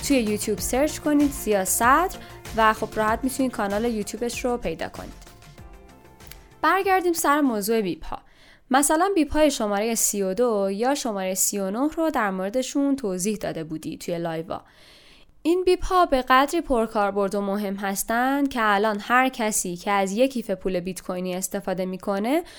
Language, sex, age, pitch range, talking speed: Persian, female, 10-29, 205-285 Hz, 140 wpm